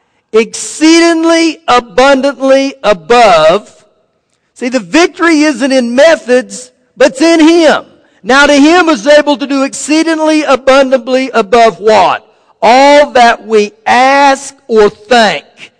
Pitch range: 225-295 Hz